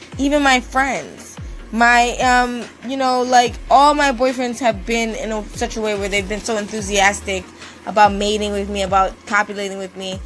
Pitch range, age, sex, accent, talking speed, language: 195-240 Hz, 20-39, female, American, 180 wpm, English